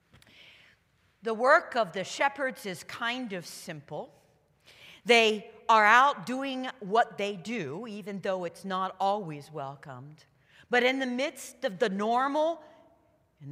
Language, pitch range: English, 155-250 Hz